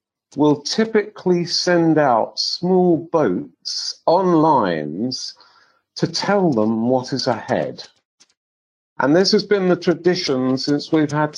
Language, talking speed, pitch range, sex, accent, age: English, 120 wpm, 135-180 Hz, male, British, 50-69